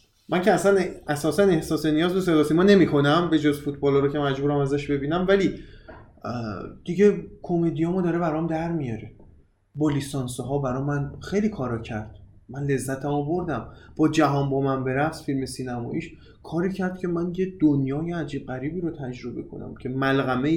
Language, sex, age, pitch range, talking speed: Persian, male, 20-39, 120-165 Hz, 165 wpm